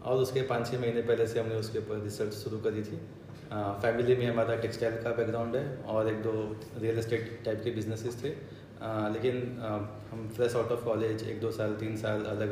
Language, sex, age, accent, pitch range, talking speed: Hindi, male, 20-39, native, 110-120 Hz, 220 wpm